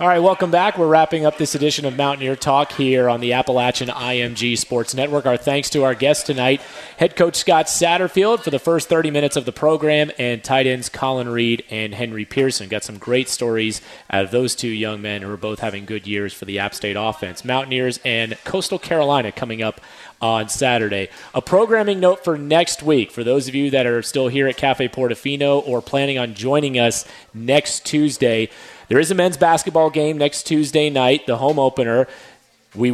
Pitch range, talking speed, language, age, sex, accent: 120-150 Hz, 200 wpm, English, 30-49, male, American